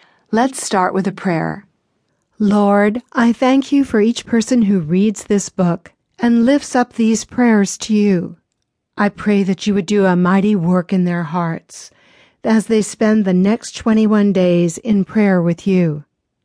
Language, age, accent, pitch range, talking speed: English, 50-69, American, 180-230 Hz, 170 wpm